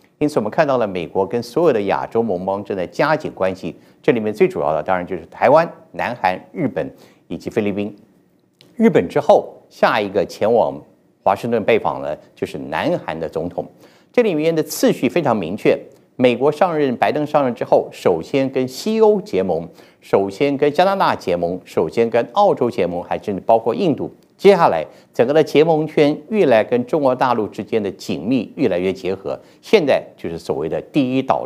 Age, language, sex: 50-69, Chinese, male